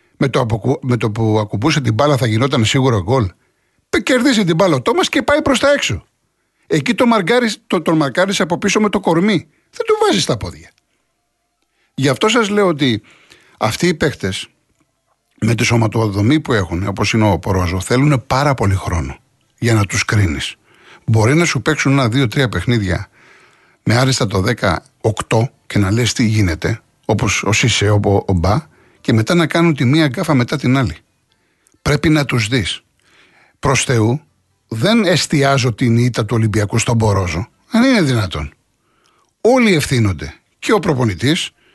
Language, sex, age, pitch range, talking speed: Greek, male, 60-79, 110-165 Hz, 170 wpm